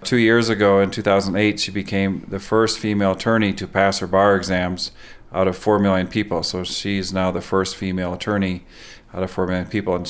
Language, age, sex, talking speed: English, 40-59, male, 200 wpm